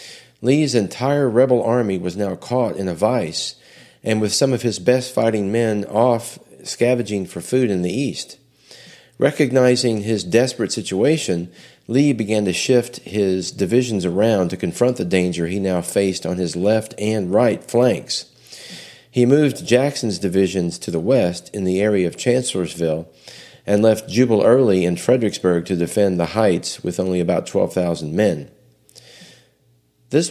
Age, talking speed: 40-59, 150 wpm